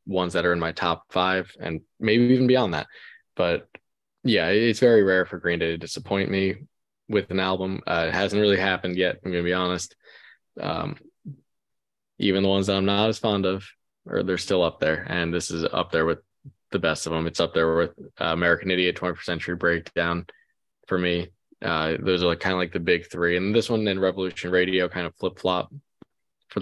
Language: English